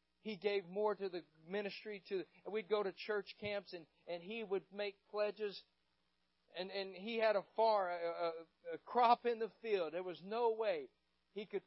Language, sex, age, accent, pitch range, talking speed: English, male, 50-69, American, 165-245 Hz, 185 wpm